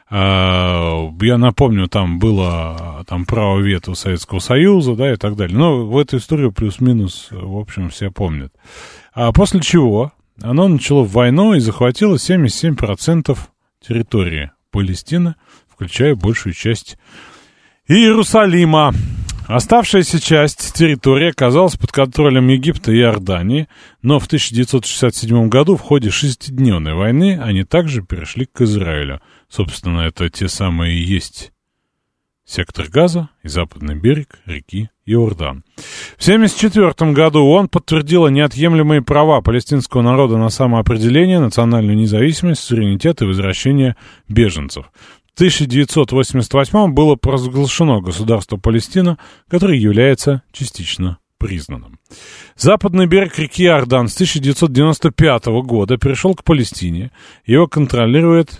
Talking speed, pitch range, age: 110 wpm, 100-150 Hz, 30-49